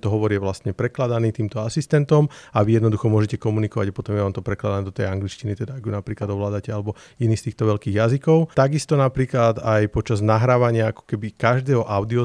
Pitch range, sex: 105-130 Hz, male